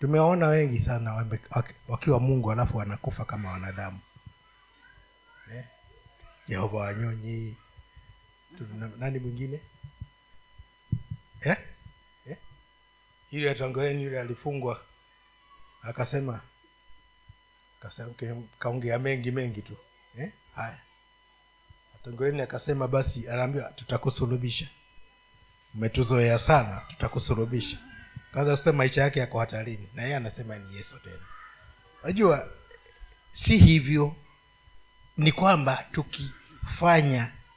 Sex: male